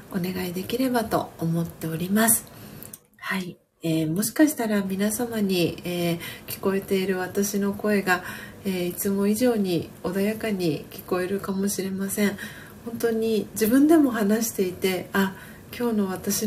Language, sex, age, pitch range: Japanese, female, 40-59, 180-210 Hz